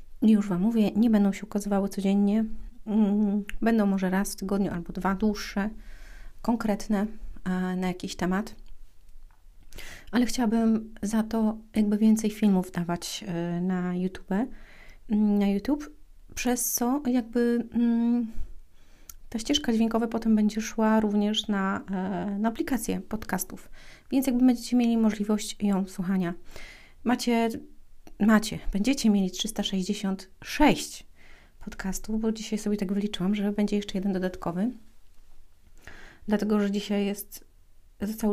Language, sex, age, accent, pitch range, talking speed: Polish, female, 30-49, native, 190-230 Hz, 115 wpm